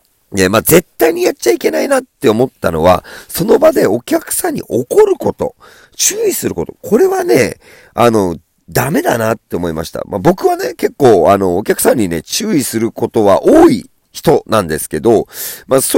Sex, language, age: male, Japanese, 40-59